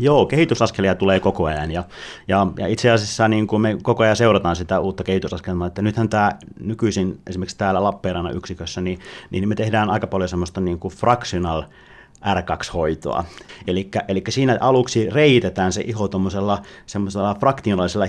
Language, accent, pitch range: Finnish, native, 95-120 Hz